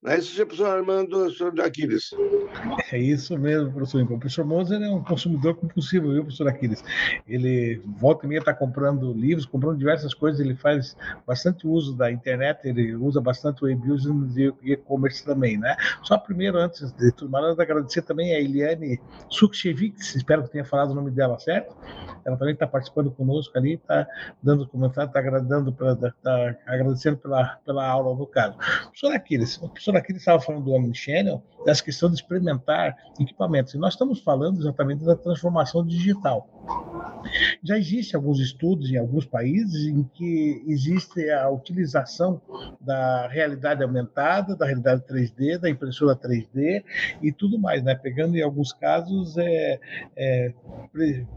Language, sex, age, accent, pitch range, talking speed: Portuguese, male, 60-79, Brazilian, 135-170 Hz, 155 wpm